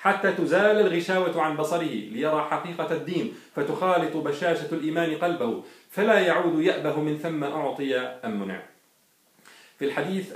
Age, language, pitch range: 40-59, Arabic, 125-175 Hz